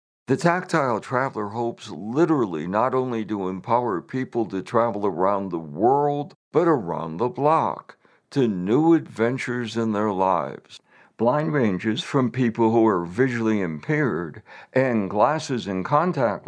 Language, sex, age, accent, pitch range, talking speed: English, male, 60-79, American, 105-145 Hz, 135 wpm